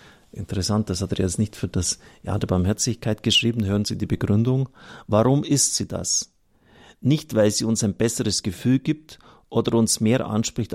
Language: German